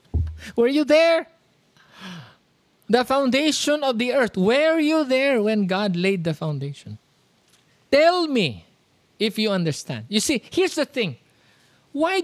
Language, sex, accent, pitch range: English, male, Filipino, 185-275 Hz